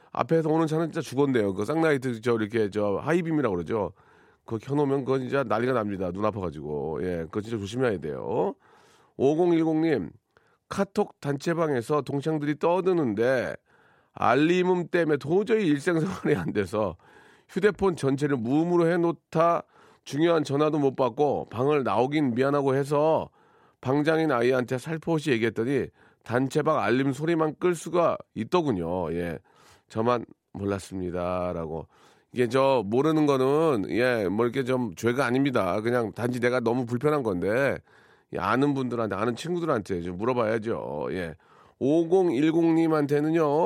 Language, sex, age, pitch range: Korean, male, 40-59, 115-160 Hz